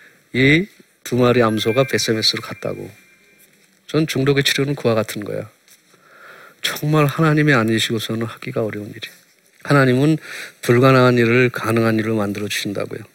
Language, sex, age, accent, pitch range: Korean, male, 40-59, native, 120-155 Hz